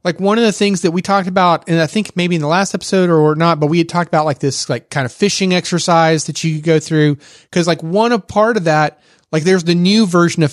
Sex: male